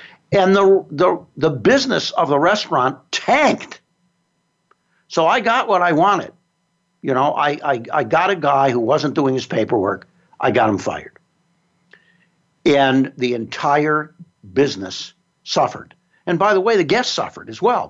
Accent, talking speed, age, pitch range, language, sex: American, 155 wpm, 60-79, 115-165 Hz, English, male